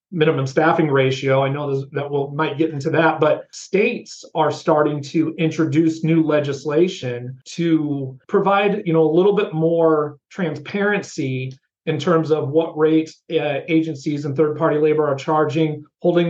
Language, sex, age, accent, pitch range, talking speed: English, male, 40-59, American, 150-170 Hz, 145 wpm